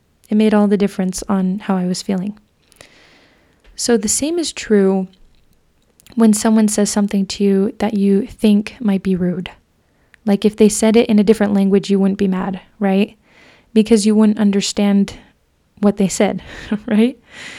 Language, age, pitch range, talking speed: English, 20-39, 190-215 Hz, 165 wpm